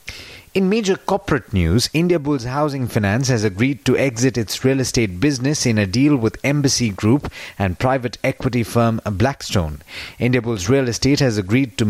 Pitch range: 110-145 Hz